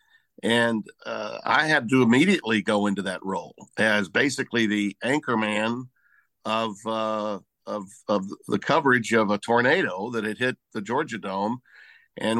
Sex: male